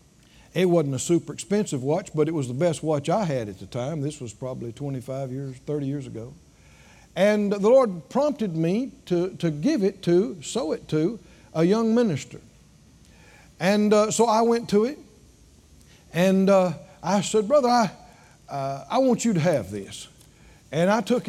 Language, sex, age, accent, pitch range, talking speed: English, male, 60-79, American, 145-220 Hz, 180 wpm